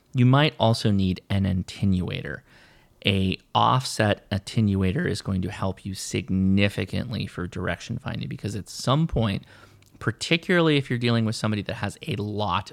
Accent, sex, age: American, male, 30-49